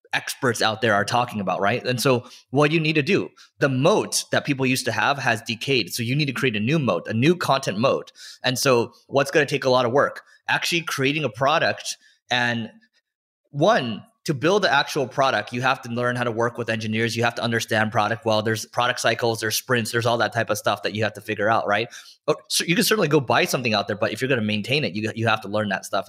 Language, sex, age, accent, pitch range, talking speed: English, male, 20-39, American, 115-145 Hz, 260 wpm